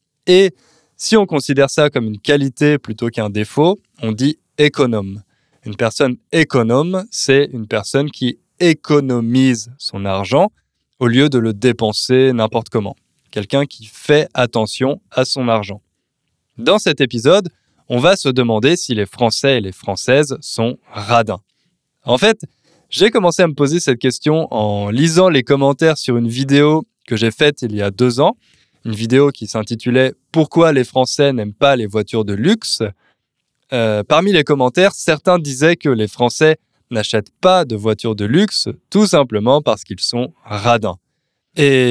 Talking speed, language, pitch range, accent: 165 wpm, French, 110-150 Hz, French